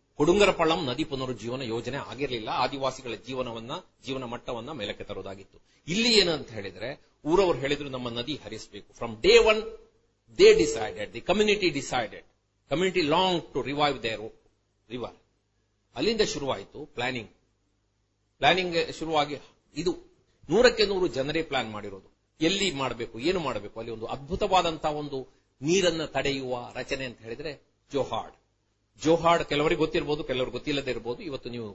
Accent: native